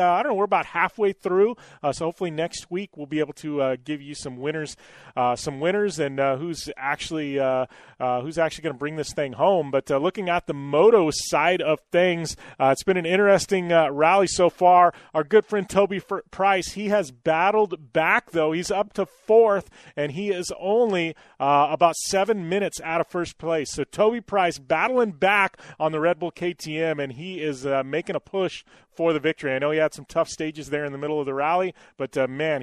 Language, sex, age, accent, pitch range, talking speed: English, male, 30-49, American, 150-195 Hz, 220 wpm